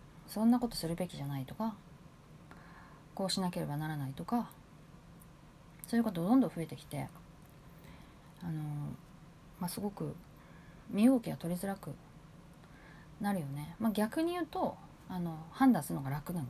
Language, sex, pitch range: Japanese, female, 150-200 Hz